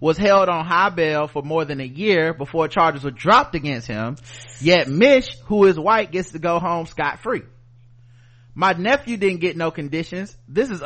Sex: male